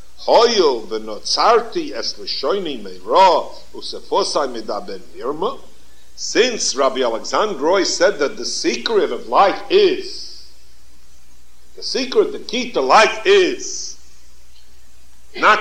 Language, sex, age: English, male, 60-79